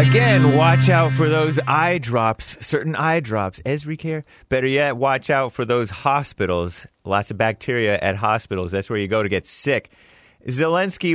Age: 30-49